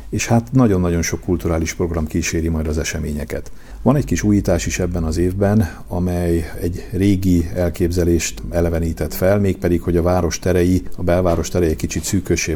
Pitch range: 80-90 Hz